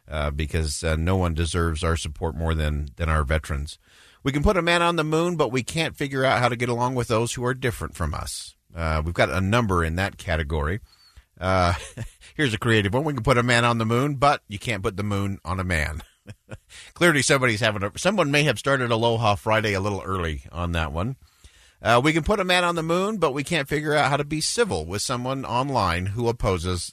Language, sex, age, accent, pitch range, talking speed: English, male, 50-69, American, 90-125 Hz, 235 wpm